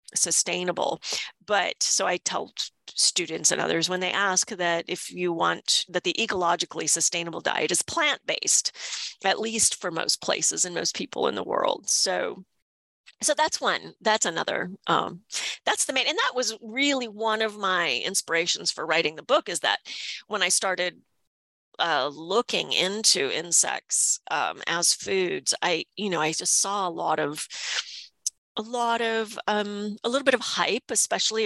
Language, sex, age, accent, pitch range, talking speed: English, female, 40-59, American, 170-225 Hz, 165 wpm